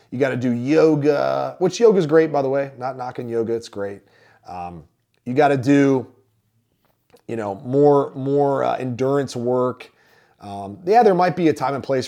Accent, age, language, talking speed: American, 30-49, English, 190 wpm